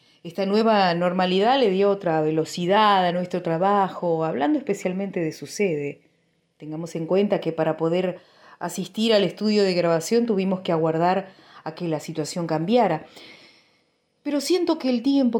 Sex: female